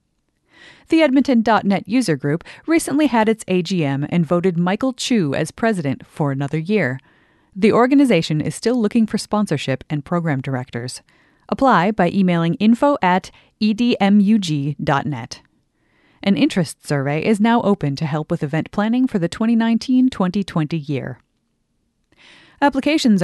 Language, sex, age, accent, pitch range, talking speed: English, female, 30-49, American, 155-225 Hz, 125 wpm